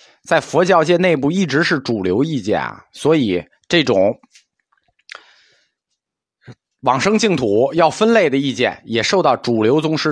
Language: Chinese